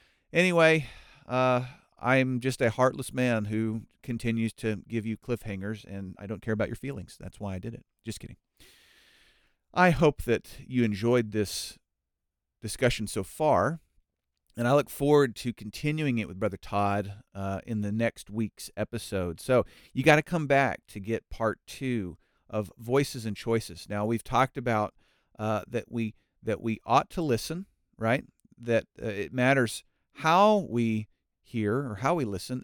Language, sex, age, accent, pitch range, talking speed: English, male, 40-59, American, 105-135 Hz, 165 wpm